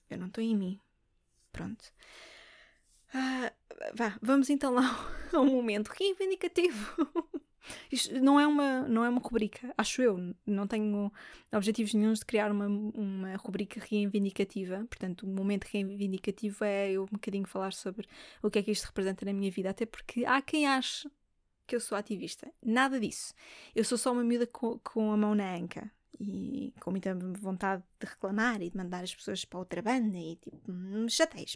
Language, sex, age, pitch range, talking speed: Portuguese, female, 20-39, 195-230 Hz, 165 wpm